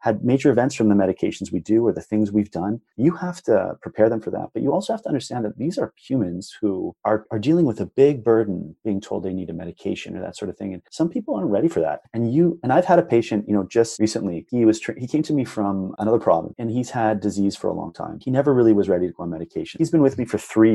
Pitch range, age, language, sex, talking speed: 100-120 Hz, 30-49, English, male, 290 wpm